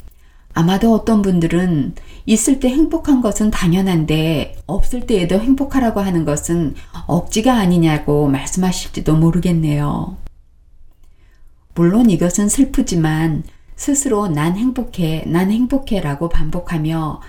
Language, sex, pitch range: Korean, female, 145-205 Hz